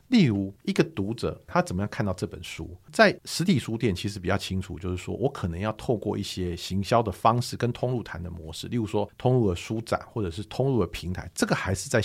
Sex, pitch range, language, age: male, 90-120 Hz, Chinese, 50-69